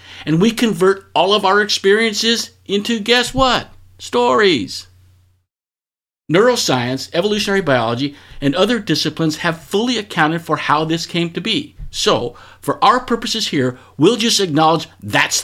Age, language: 50-69, English